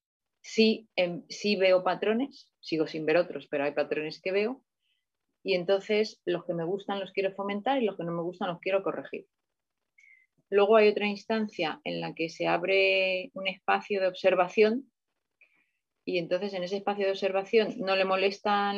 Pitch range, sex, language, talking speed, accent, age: 170-220 Hz, female, Spanish, 175 wpm, Spanish, 30-49